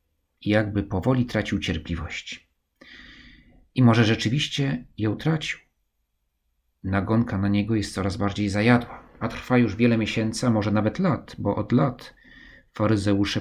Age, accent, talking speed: 40-59, native, 130 wpm